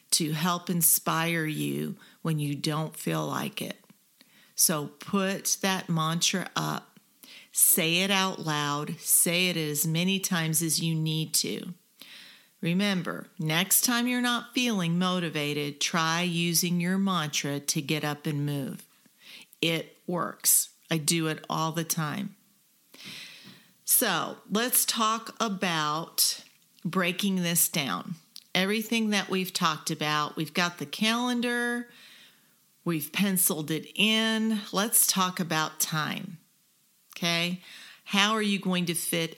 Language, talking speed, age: English, 125 wpm, 40-59